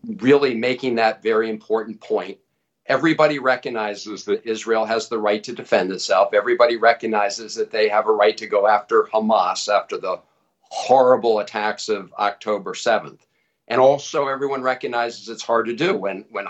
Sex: male